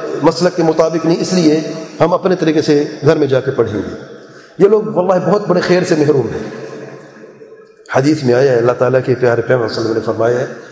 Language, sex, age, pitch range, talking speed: English, male, 40-59, 145-180 Hz, 225 wpm